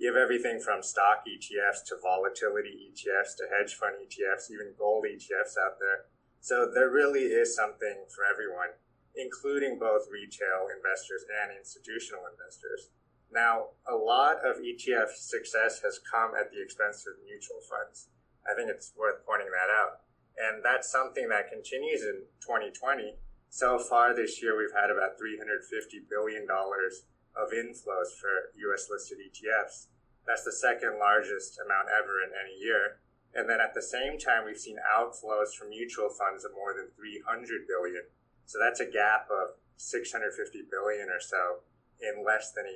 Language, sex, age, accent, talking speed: English, male, 20-39, American, 160 wpm